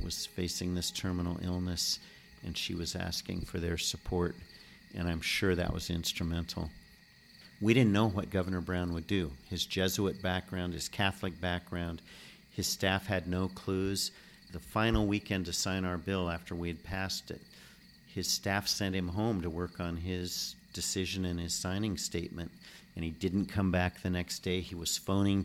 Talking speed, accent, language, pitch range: 175 wpm, American, English, 85-95 Hz